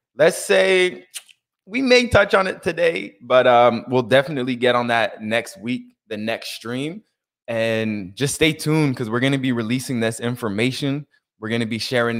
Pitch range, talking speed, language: 110-140 Hz, 180 wpm, English